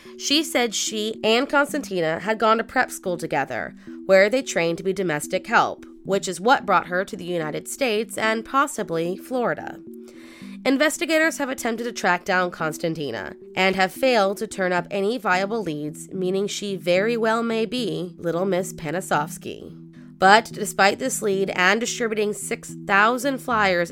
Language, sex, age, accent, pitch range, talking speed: English, female, 20-39, American, 165-220 Hz, 160 wpm